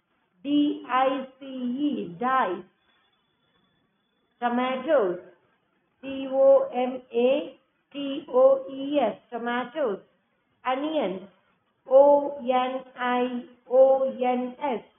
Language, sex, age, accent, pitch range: Tamil, female, 50-69, native, 240-290 Hz